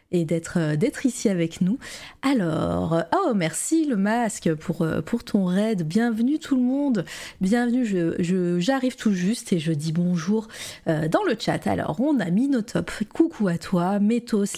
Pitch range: 175-230 Hz